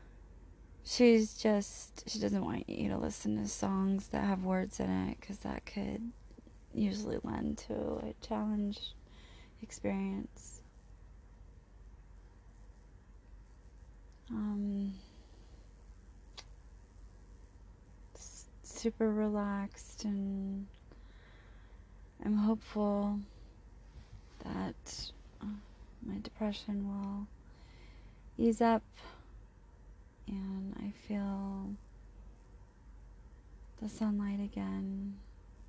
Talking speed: 70 wpm